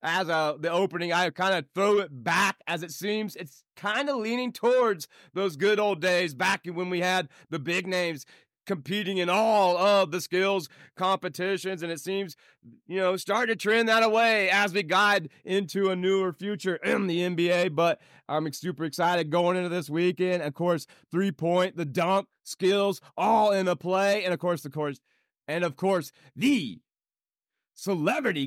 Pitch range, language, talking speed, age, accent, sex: 170-200 Hz, English, 175 wpm, 30-49, American, male